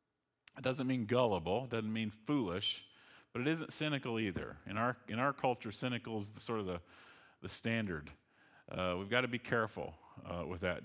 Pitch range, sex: 110-140 Hz, male